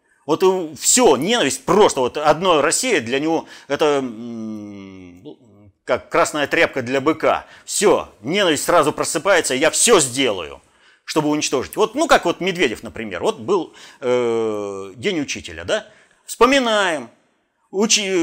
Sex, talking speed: male, 125 wpm